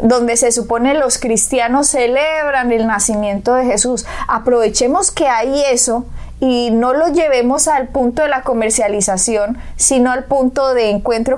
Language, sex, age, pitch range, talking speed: Spanish, female, 20-39, 215-260 Hz, 150 wpm